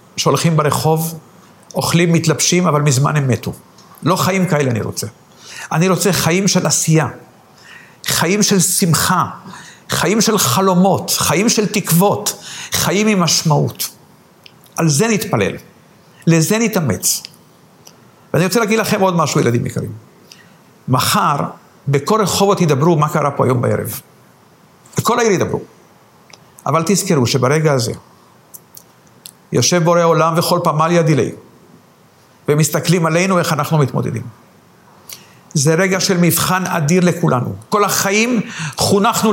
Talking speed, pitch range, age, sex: 120 wpm, 140-190 Hz, 50-69, male